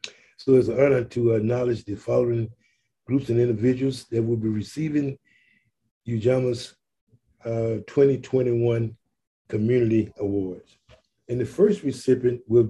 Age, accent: 50-69, American